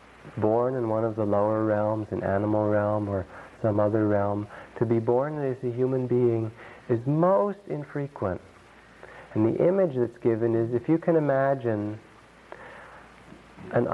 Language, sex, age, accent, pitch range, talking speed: English, male, 50-69, American, 105-135 Hz, 150 wpm